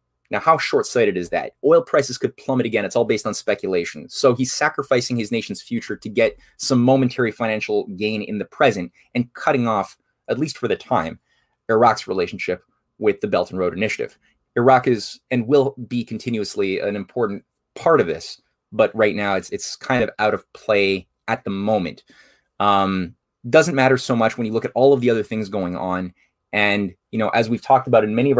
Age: 20-39